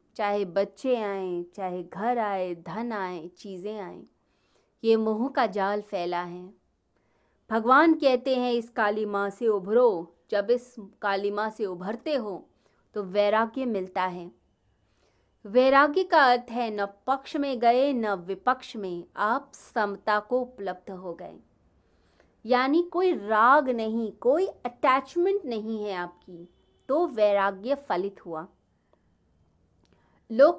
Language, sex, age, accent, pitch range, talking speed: Hindi, female, 30-49, native, 190-260 Hz, 130 wpm